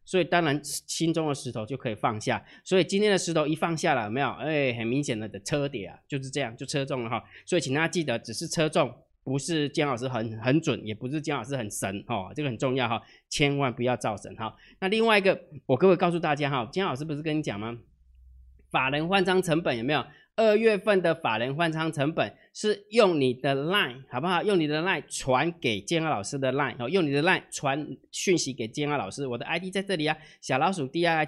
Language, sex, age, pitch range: Chinese, male, 20-39, 125-175 Hz